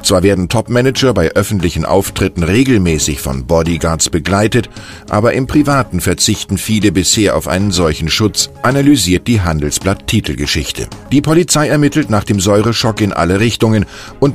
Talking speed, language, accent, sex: 140 wpm, German, German, male